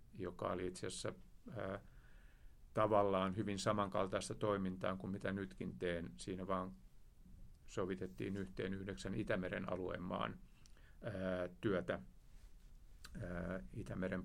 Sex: male